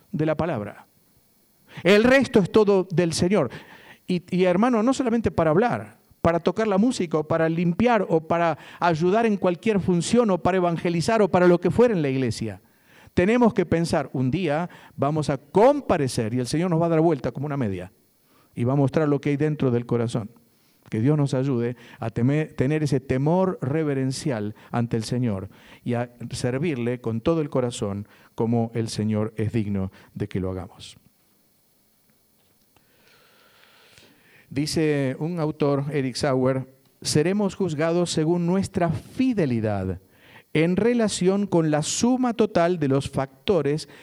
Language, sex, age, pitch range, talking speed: Spanish, male, 50-69, 130-185 Hz, 160 wpm